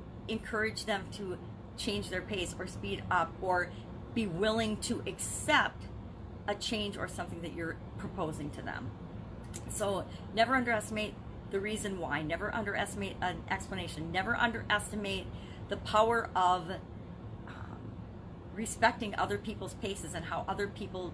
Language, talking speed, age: English, 135 wpm, 40-59